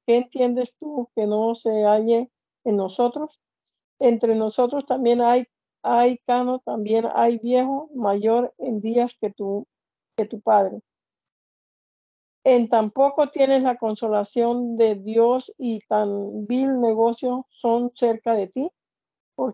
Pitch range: 220-255 Hz